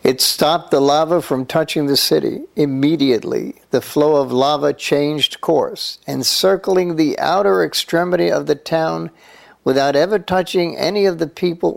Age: 60-79